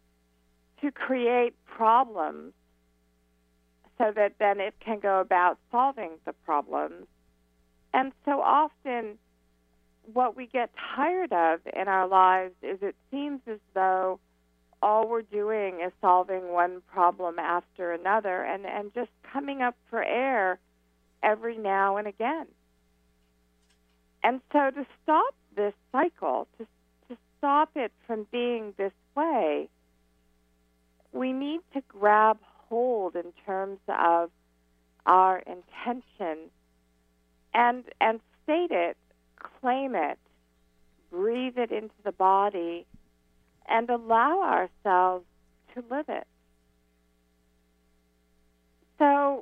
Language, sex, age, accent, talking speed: English, female, 50-69, American, 110 wpm